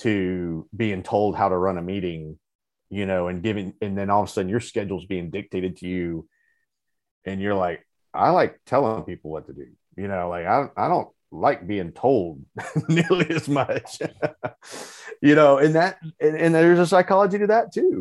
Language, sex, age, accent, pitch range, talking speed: English, male, 30-49, American, 85-110 Hz, 195 wpm